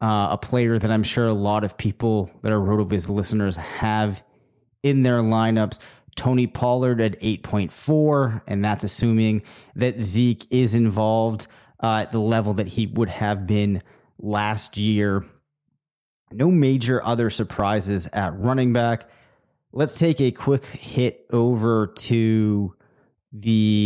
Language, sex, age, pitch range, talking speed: English, male, 30-49, 105-125 Hz, 140 wpm